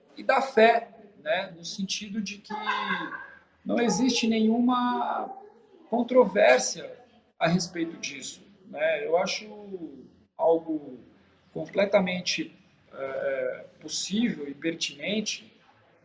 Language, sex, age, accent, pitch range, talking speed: Portuguese, male, 50-69, Brazilian, 180-240 Hz, 85 wpm